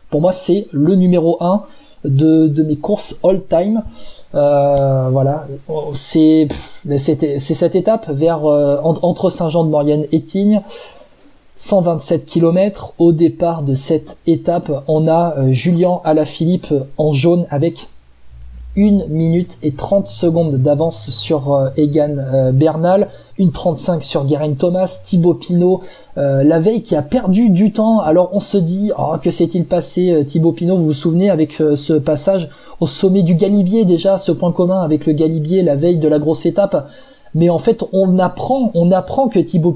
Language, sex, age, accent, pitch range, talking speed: French, male, 20-39, French, 155-190 Hz, 155 wpm